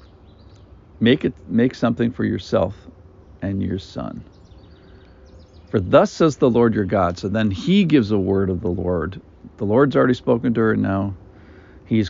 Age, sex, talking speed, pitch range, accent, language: 50-69, male, 170 wpm, 90-115 Hz, American, English